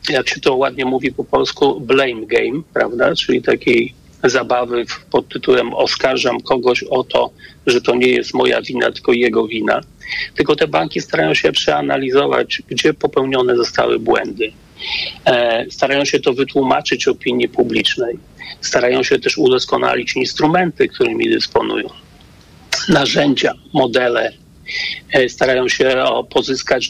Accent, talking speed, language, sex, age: native, 125 wpm, Polish, male, 40-59